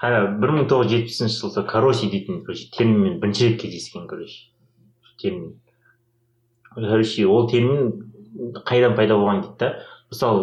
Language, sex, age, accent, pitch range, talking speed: Russian, male, 30-49, Turkish, 110-125 Hz, 150 wpm